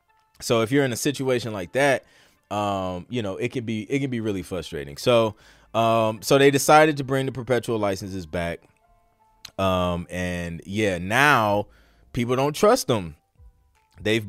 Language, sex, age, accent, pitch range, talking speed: English, male, 20-39, American, 90-115 Hz, 165 wpm